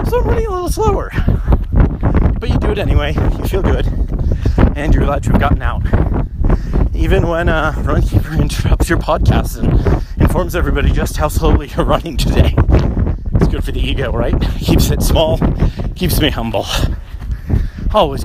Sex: male